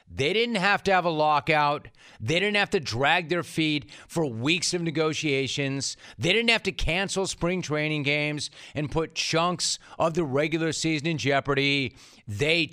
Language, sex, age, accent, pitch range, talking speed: English, male, 40-59, American, 130-170 Hz, 170 wpm